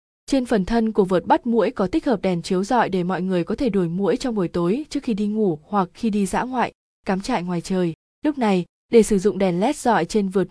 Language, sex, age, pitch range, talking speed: Vietnamese, female, 20-39, 190-230 Hz, 265 wpm